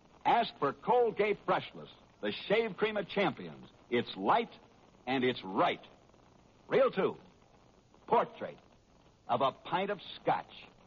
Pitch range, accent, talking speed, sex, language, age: 140-205 Hz, American, 120 wpm, male, English, 60-79